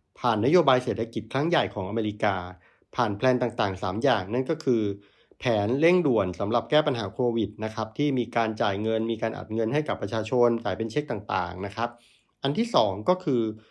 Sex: male